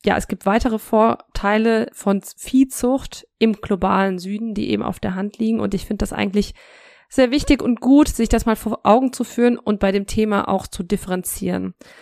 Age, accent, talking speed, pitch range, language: 20-39, German, 195 wpm, 195-235 Hz, German